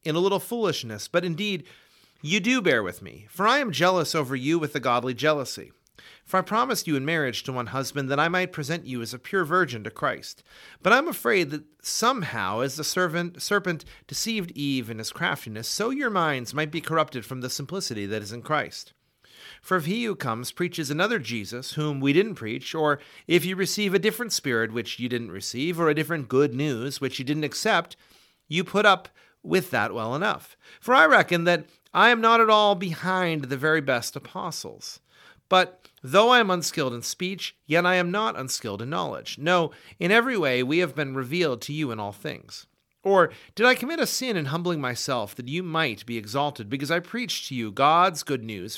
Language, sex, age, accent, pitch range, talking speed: English, male, 40-59, American, 130-185 Hz, 210 wpm